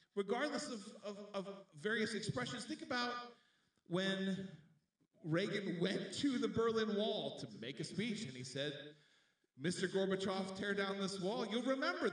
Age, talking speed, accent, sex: 40-59, 145 wpm, American, male